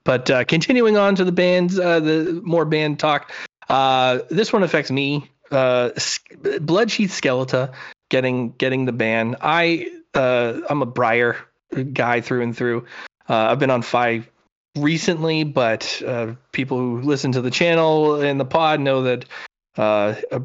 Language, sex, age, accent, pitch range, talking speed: English, male, 30-49, American, 125-155 Hz, 160 wpm